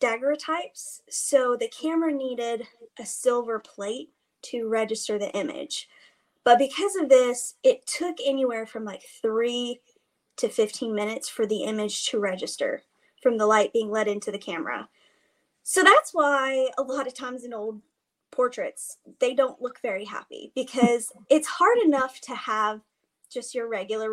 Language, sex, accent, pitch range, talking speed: English, female, American, 225-300 Hz, 155 wpm